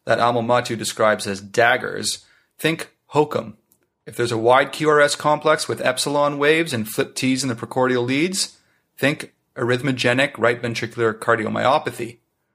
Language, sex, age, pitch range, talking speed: English, male, 30-49, 115-135 Hz, 140 wpm